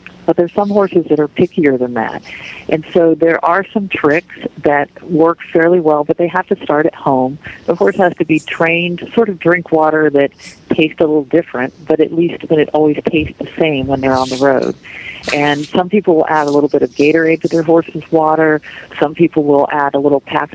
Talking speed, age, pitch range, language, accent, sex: 225 wpm, 50-69, 145-165 Hz, English, American, female